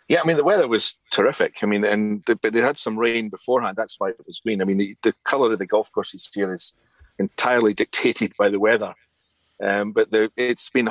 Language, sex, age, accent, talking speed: English, male, 40-59, British, 235 wpm